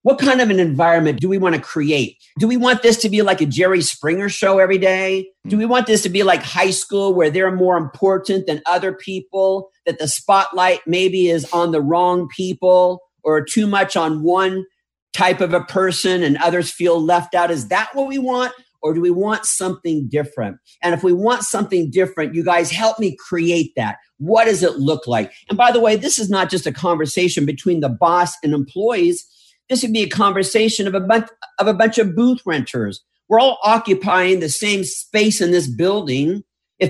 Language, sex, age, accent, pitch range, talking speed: English, male, 50-69, American, 170-210 Hz, 210 wpm